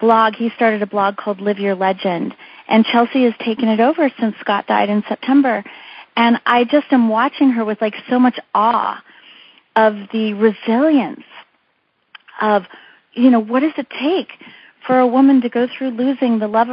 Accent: American